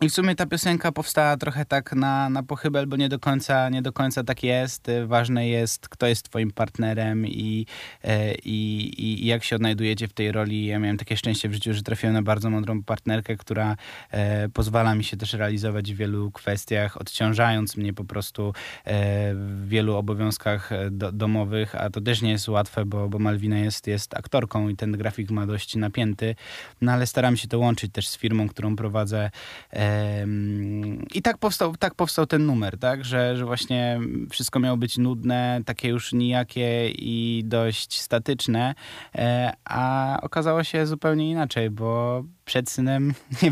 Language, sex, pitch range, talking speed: Polish, male, 105-125 Hz, 165 wpm